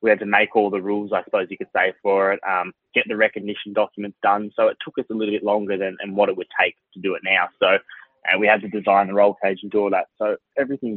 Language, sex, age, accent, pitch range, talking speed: English, male, 20-39, Australian, 100-110 Hz, 290 wpm